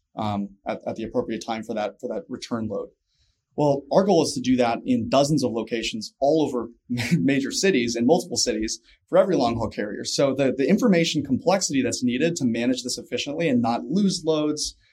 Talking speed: 205 wpm